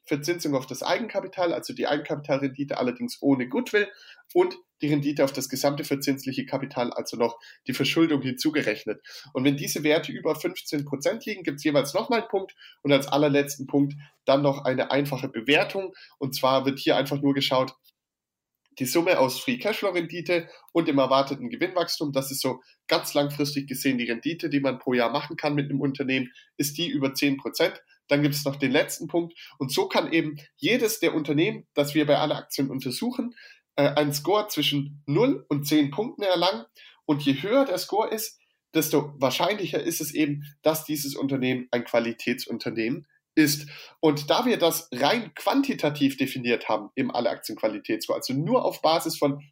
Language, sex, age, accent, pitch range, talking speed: German, male, 10-29, German, 135-175 Hz, 175 wpm